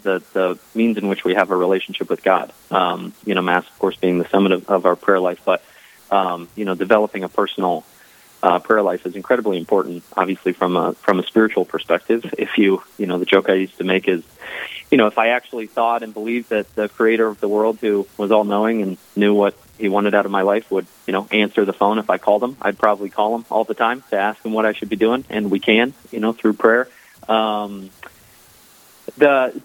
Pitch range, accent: 100-115 Hz, American